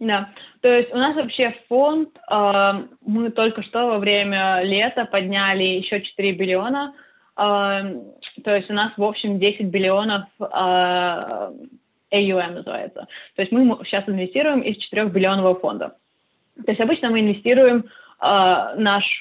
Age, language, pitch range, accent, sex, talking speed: 20-39, Russian, 190-225 Hz, native, female, 145 wpm